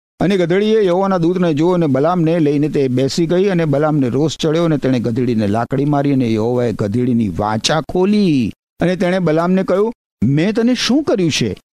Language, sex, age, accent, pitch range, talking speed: Gujarati, male, 50-69, native, 130-195 Hz, 175 wpm